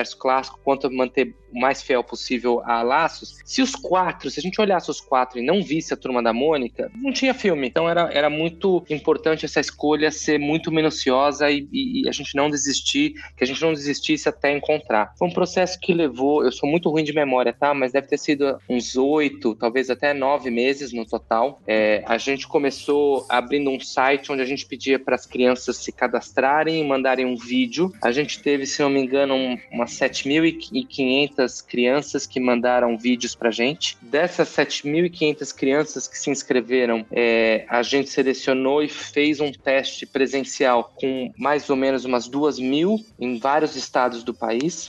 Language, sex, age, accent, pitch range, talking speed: Portuguese, male, 20-39, Brazilian, 125-155 Hz, 185 wpm